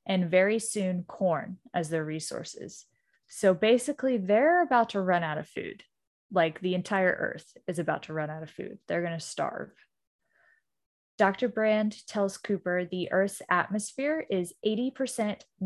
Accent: American